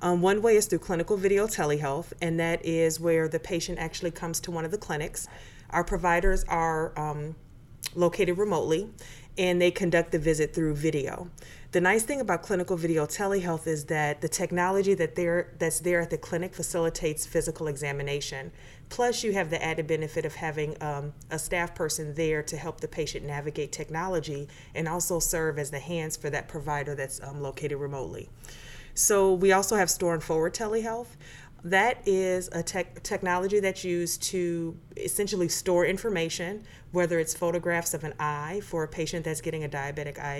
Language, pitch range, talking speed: English, 150-180 Hz, 175 wpm